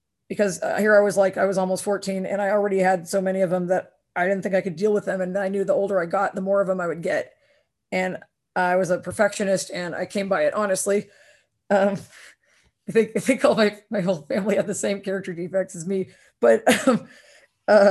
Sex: female